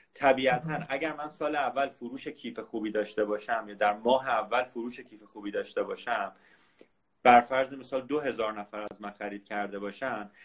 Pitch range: 115-155 Hz